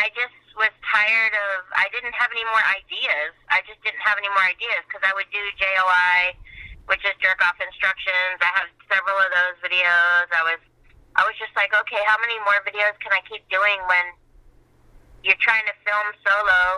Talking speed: 195 wpm